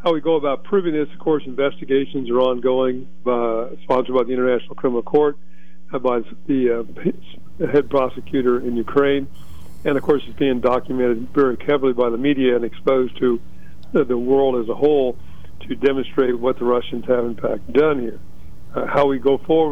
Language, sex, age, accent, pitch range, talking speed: English, male, 50-69, American, 120-140 Hz, 185 wpm